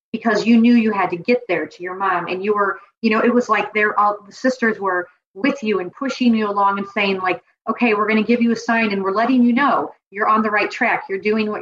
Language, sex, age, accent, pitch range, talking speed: English, female, 40-59, American, 200-250 Hz, 280 wpm